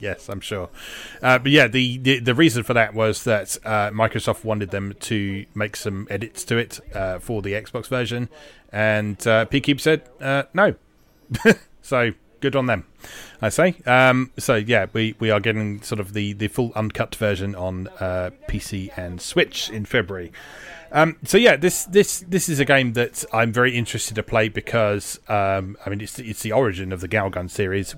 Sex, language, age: male, English, 30-49